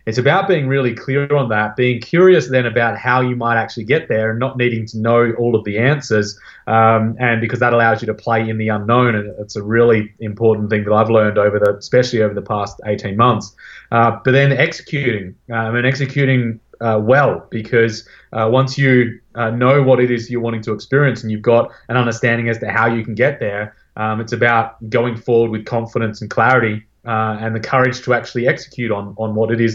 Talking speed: 220 wpm